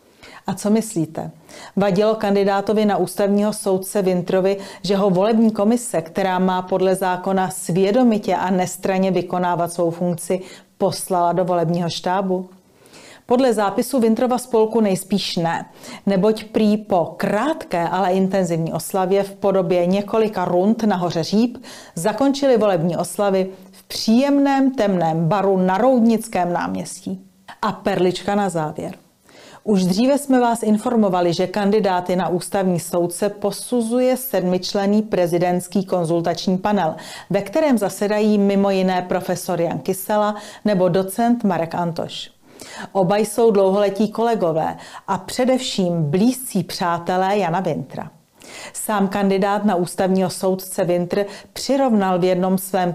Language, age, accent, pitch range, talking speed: Czech, 40-59, native, 185-215 Hz, 120 wpm